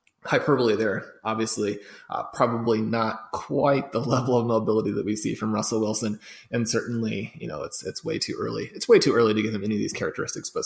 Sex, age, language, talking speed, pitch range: male, 20-39, English, 215 wpm, 110-120 Hz